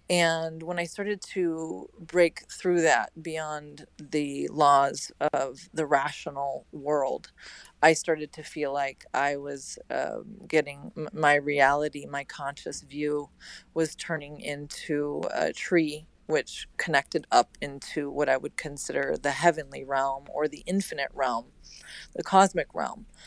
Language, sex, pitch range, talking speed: English, female, 150-185 Hz, 135 wpm